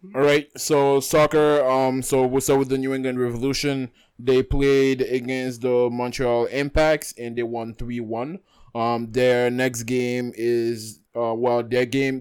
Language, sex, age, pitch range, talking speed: English, male, 20-39, 115-135 Hz, 155 wpm